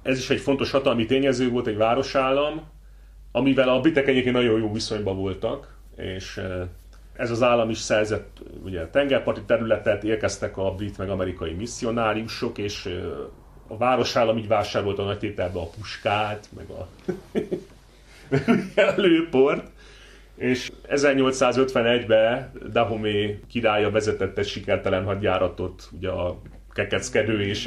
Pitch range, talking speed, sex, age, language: 95-120 Hz, 120 wpm, male, 30-49, Hungarian